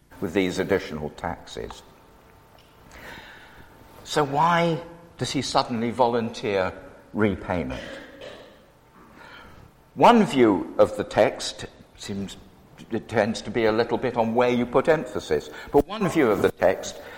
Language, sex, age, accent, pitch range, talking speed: English, male, 60-79, British, 95-140 Hz, 120 wpm